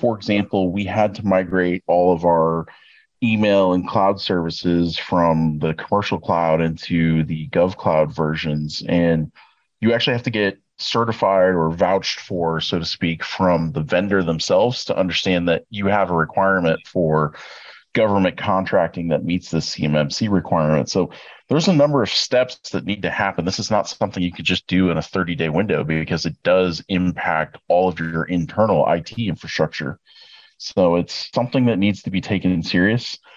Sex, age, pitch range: male, 30-49, 85-110 Hz